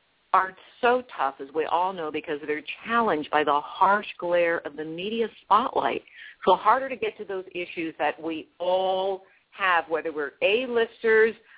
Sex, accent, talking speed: female, American, 165 wpm